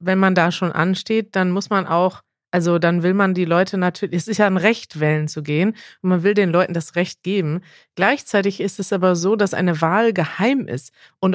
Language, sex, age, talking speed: German, female, 30-49, 225 wpm